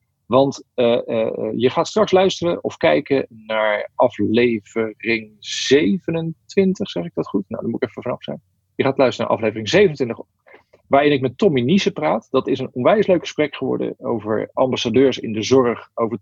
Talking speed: 180 wpm